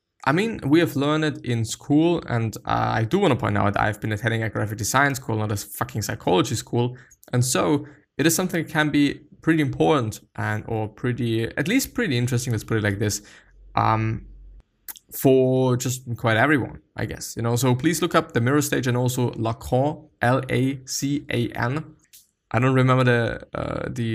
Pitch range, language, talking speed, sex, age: 110-140 Hz, English, 190 wpm, male, 20-39